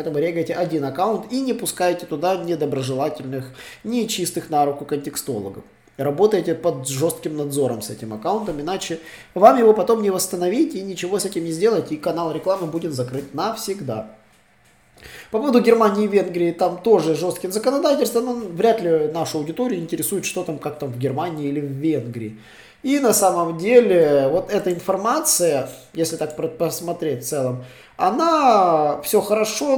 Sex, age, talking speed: male, 20-39, 155 wpm